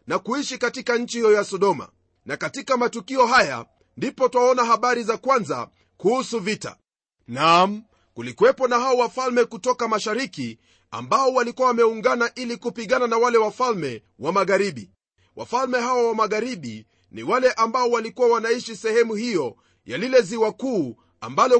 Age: 40-59